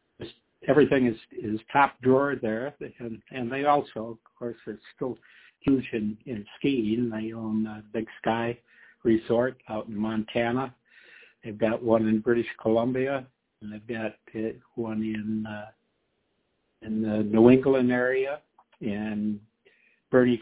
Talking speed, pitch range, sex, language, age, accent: 135 wpm, 105-120 Hz, male, English, 60-79, American